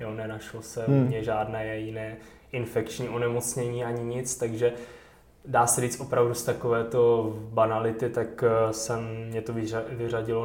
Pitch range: 115-130 Hz